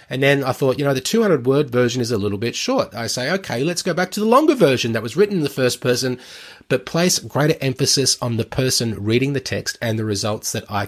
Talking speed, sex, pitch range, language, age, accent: 260 wpm, male, 105-130 Hz, English, 30-49, Australian